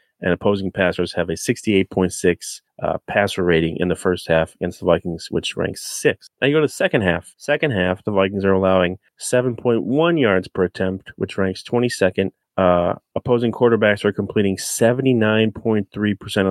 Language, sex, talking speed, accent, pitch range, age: English, male, 160 wpm, American, 90-110 Hz, 30-49